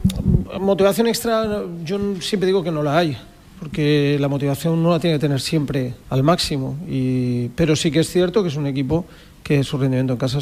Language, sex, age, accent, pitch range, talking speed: Spanish, male, 40-59, Spanish, 125-150 Hz, 195 wpm